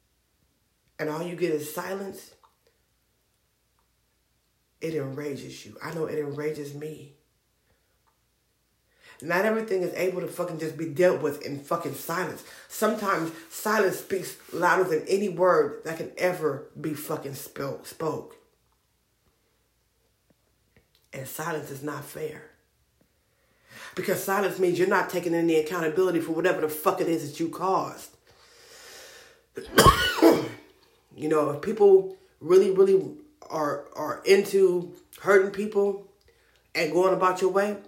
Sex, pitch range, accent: female, 160-200 Hz, American